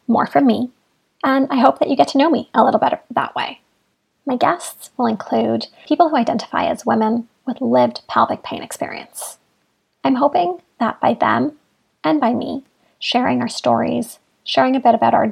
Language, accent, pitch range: English, American, 225-265 Hz